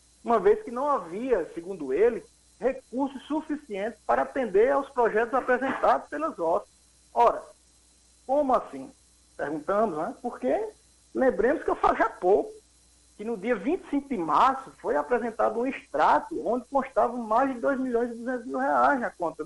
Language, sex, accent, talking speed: Portuguese, male, Brazilian, 155 wpm